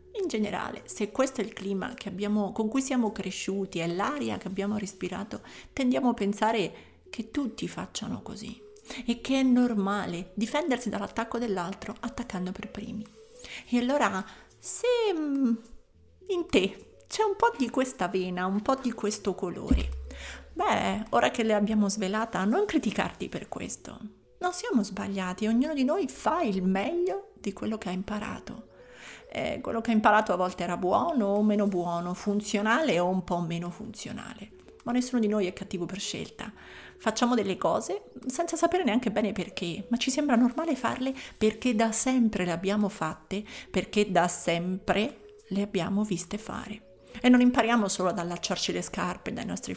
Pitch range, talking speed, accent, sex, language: 195-245 Hz, 165 wpm, native, female, Italian